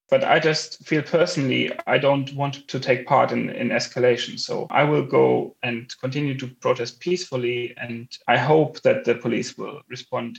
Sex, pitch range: male, 120-145 Hz